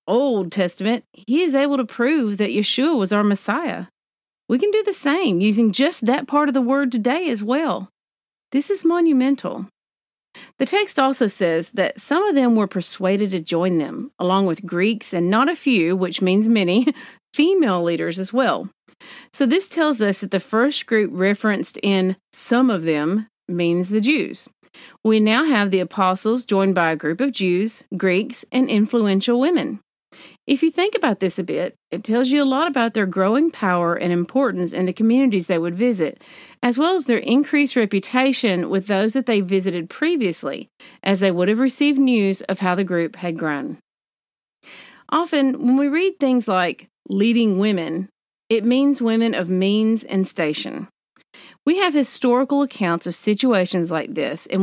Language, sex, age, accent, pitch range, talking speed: English, female, 40-59, American, 190-270 Hz, 175 wpm